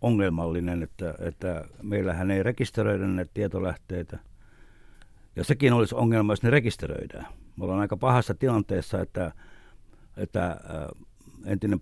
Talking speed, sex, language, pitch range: 115 wpm, male, Finnish, 95-115 Hz